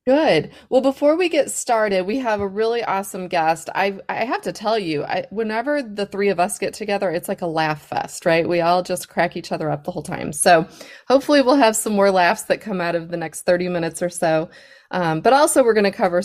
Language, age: English, 30-49